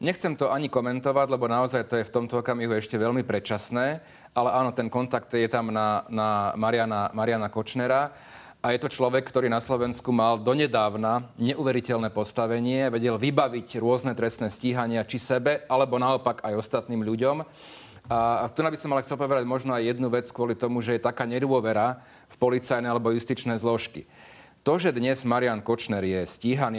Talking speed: 175 wpm